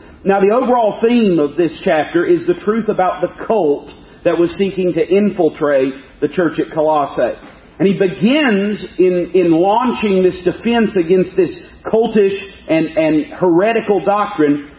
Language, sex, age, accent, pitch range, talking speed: English, male, 40-59, American, 165-220 Hz, 150 wpm